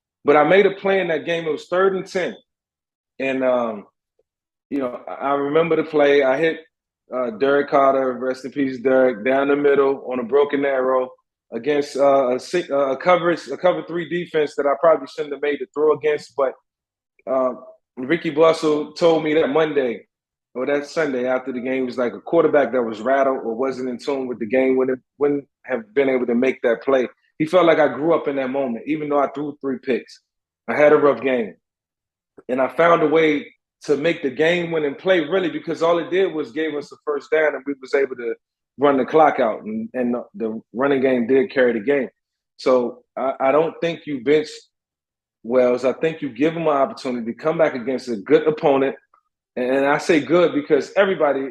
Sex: male